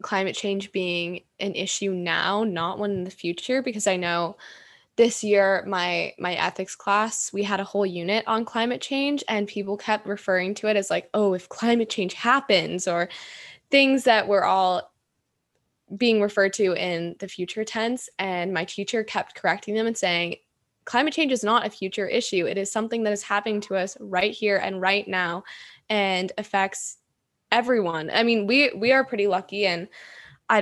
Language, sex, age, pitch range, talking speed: English, female, 10-29, 185-215 Hz, 180 wpm